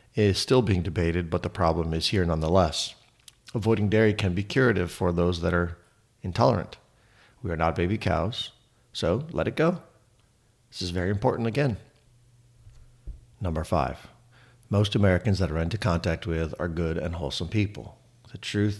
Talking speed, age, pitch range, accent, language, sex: 160 wpm, 50-69, 85-110 Hz, American, English, male